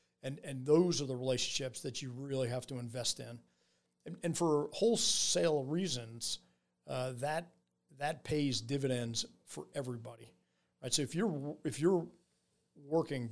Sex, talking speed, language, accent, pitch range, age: male, 145 wpm, English, American, 125-150 Hz, 50-69